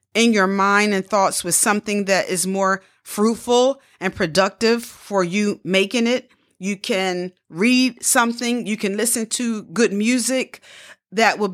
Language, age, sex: English, 40-59, female